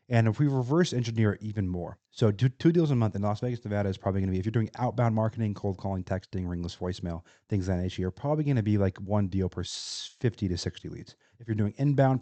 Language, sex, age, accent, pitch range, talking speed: English, male, 30-49, American, 90-115 Hz, 250 wpm